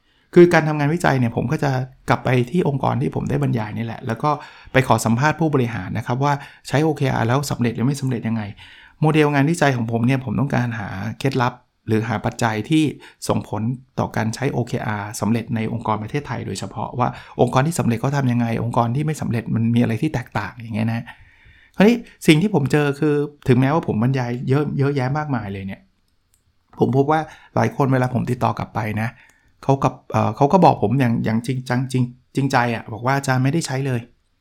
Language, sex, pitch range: Thai, male, 115-150 Hz